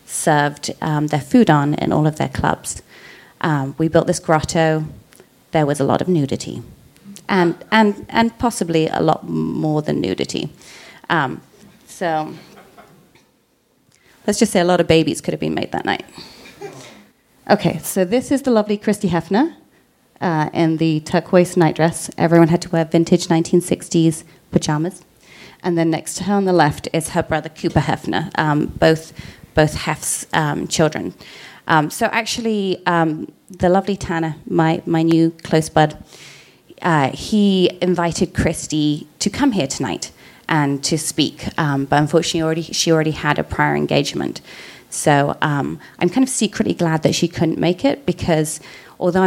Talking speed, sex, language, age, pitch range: 160 wpm, female, English, 30-49, 155-180 Hz